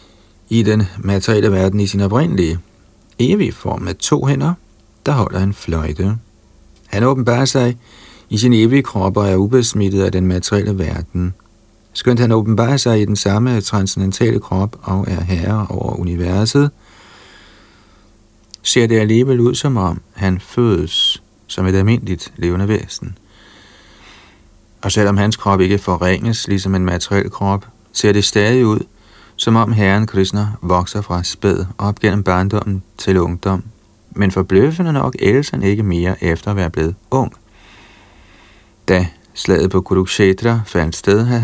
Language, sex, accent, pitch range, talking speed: Danish, male, native, 95-110 Hz, 150 wpm